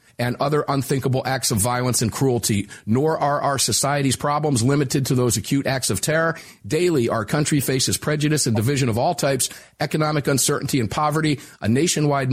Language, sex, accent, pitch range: English, male, American, 120-150 Hz